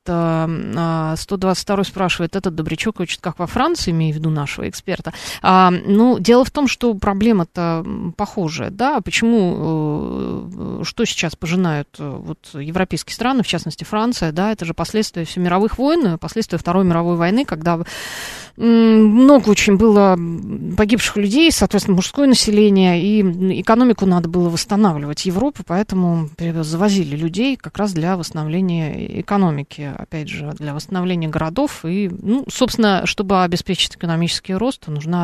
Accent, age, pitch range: native, 30-49, 170-210 Hz